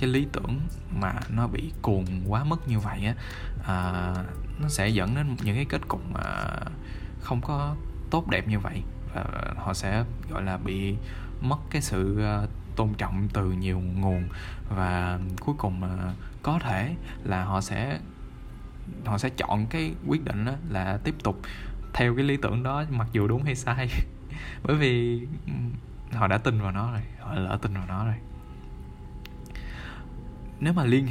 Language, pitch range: Vietnamese, 95-125 Hz